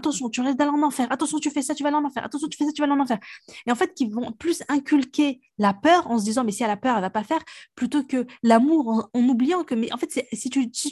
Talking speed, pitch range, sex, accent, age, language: 320 wpm, 210-275 Hz, female, French, 20-39, French